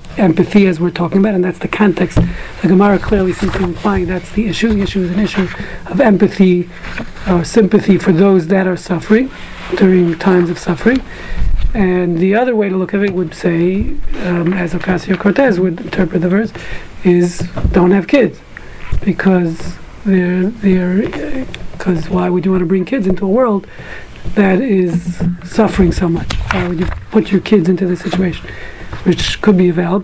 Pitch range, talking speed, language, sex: 175-200 Hz, 175 wpm, English, male